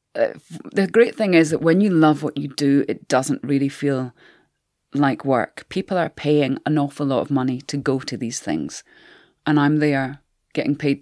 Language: English